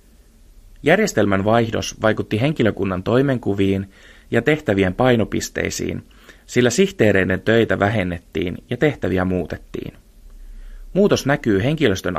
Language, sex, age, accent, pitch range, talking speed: Finnish, male, 30-49, native, 95-115 Hz, 90 wpm